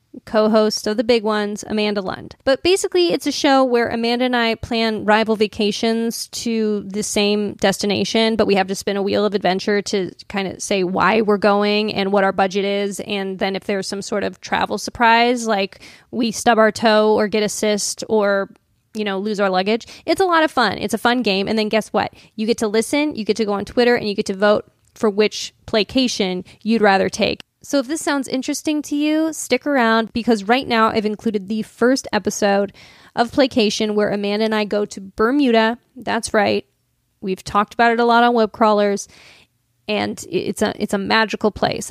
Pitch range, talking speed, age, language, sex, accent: 205-240 Hz, 205 wpm, 20-39, English, female, American